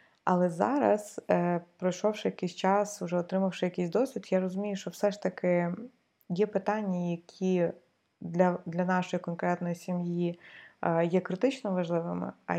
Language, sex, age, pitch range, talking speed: Ukrainian, female, 20-39, 170-190 Hz, 140 wpm